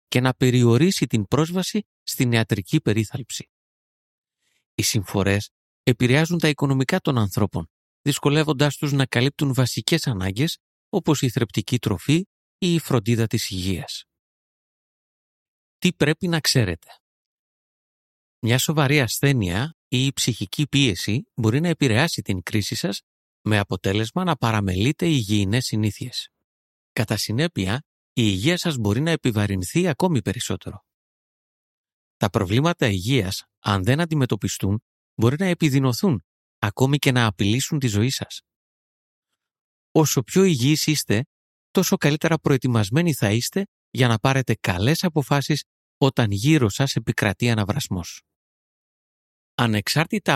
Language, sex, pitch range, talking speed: Greek, male, 105-150 Hz, 130 wpm